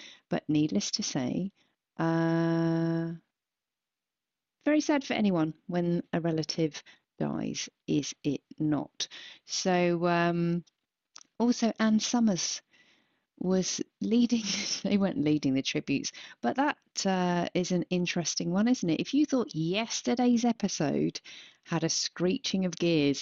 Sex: female